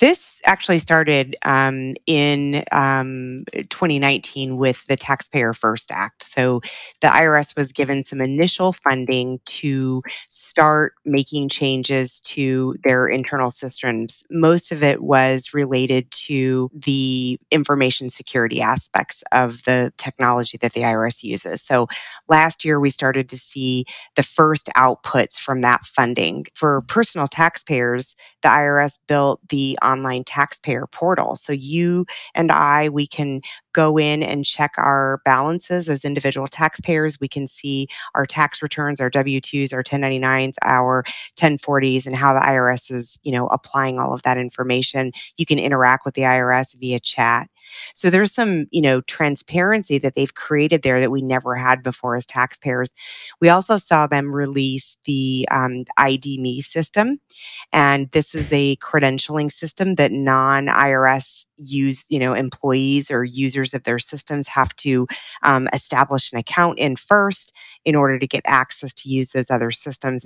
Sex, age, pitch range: female, 30-49, 130-150 Hz